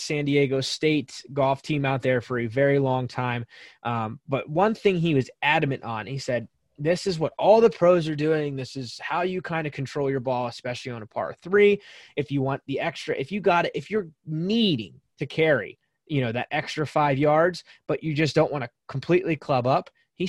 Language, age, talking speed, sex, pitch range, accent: English, 20-39, 220 wpm, male, 130-175 Hz, American